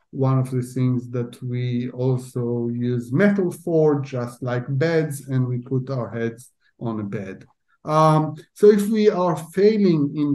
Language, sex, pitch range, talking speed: English, male, 125-160 Hz, 160 wpm